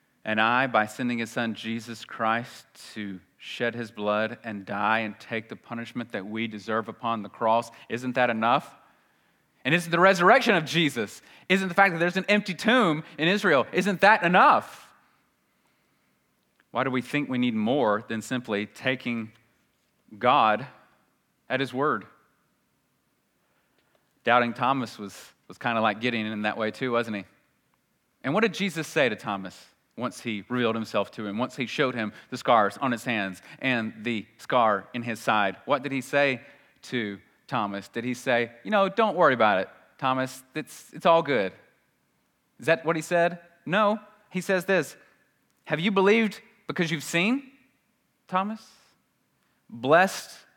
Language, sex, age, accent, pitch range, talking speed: English, male, 30-49, American, 115-170 Hz, 165 wpm